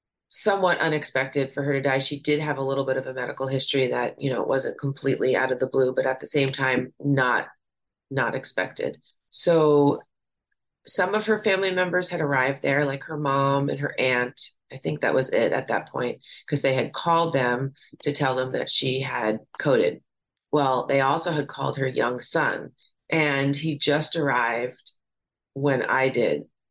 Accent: American